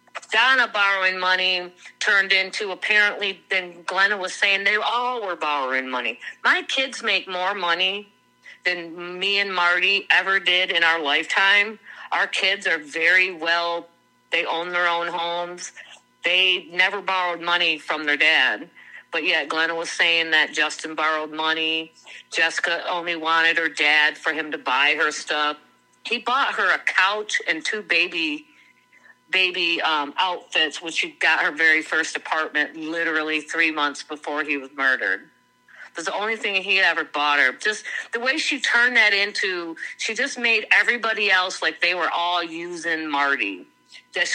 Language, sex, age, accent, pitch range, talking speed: English, female, 50-69, American, 160-210 Hz, 160 wpm